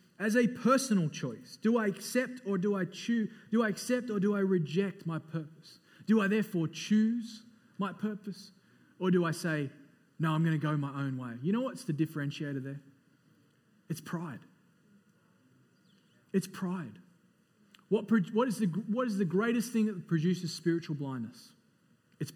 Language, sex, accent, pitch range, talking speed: English, male, Australian, 165-205 Hz, 165 wpm